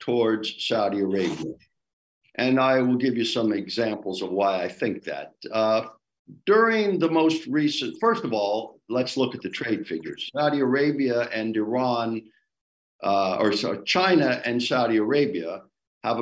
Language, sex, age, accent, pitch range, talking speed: English, male, 50-69, American, 105-155 Hz, 150 wpm